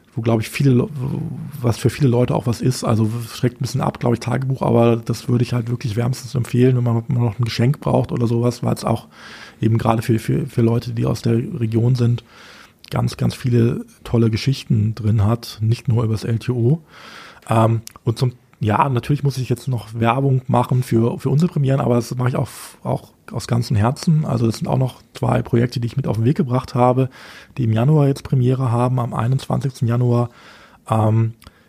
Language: German